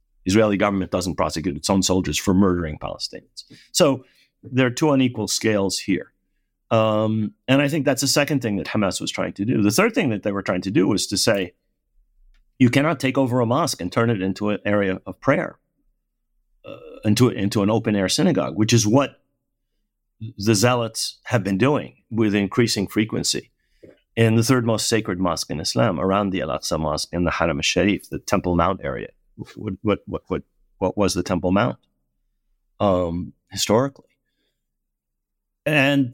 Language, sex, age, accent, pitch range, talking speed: English, male, 50-69, American, 95-120 Hz, 175 wpm